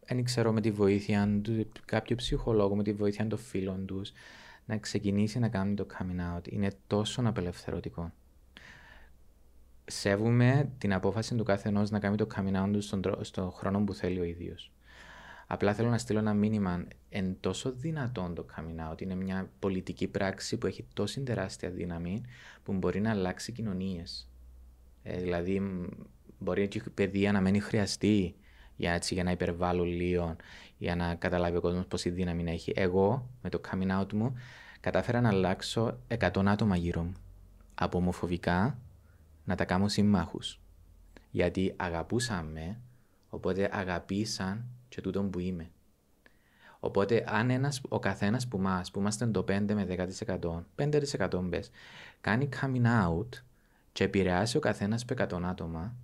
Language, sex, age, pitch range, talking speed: Greek, male, 20-39, 90-110 Hz, 150 wpm